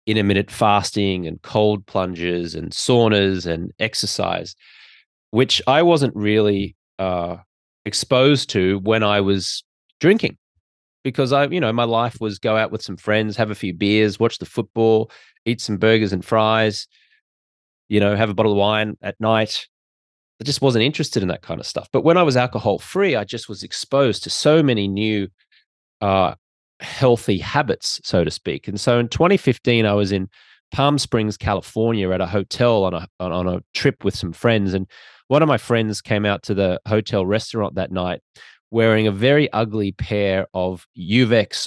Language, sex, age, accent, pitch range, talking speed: English, male, 30-49, Australian, 100-125 Hz, 175 wpm